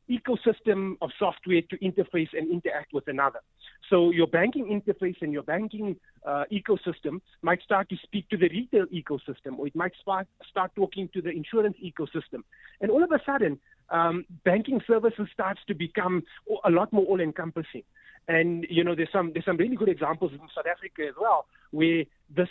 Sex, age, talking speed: male, 30-49, 175 wpm